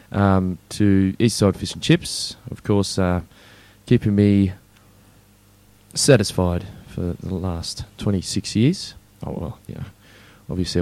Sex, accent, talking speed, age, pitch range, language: male, Australian, 120 wpm, 20-39, 90-105 Hz, English